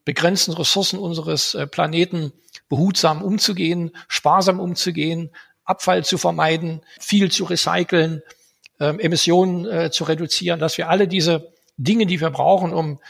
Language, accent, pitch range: German, German, 155-175 Hz